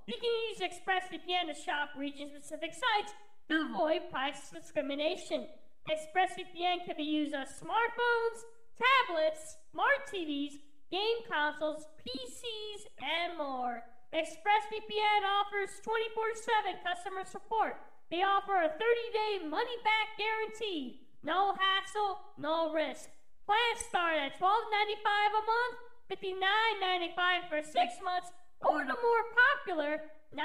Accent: American